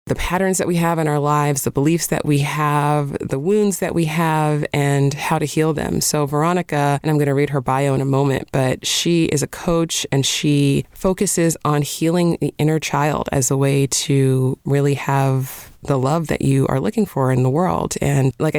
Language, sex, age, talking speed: English, female, 30-49, 215 wpm